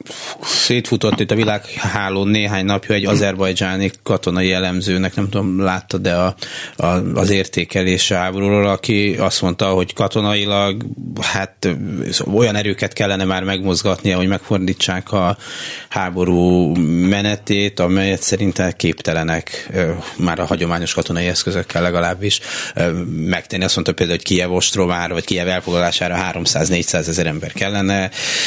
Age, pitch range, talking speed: 30-49, 85-95 Hz, 125 wpm